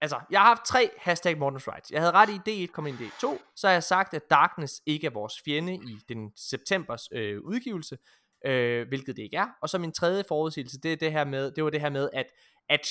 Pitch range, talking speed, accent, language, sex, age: 130-170 Hz, 240 wpm, native, Danish, male, 20-39